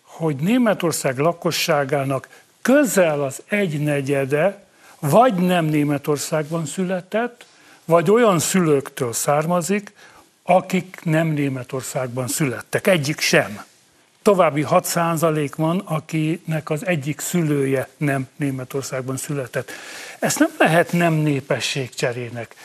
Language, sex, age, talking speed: Hungarian, male, 60-79, 95 wpm